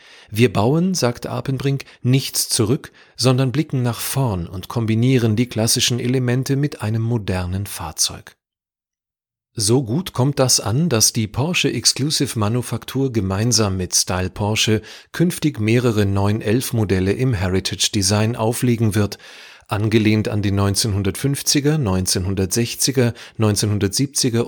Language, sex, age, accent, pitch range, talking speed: German, male, 40-59, German, 100-130 Hz, 120 wpm